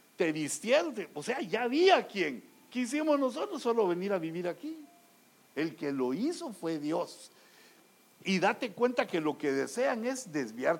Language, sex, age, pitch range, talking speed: English, male, 60-79, 180-280 Hz, 160 wpm